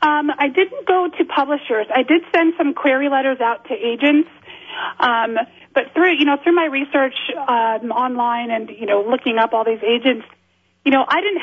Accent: American